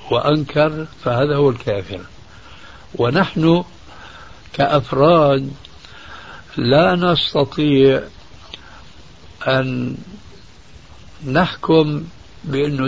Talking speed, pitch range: 50 wpm, 115-150 Hz